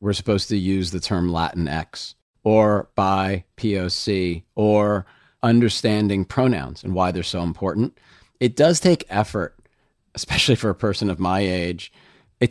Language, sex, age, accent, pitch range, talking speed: English, male, 40-59, American, 90-115 Hz, 150 wpm